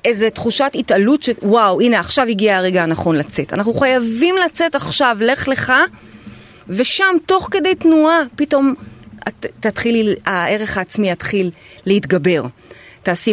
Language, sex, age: Hebrew, female, 30-49